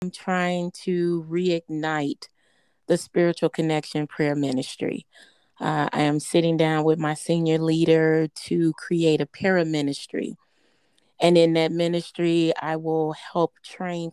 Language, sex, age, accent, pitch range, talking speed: English, female, 30-49, American, 155-175 Hz, 130 wpm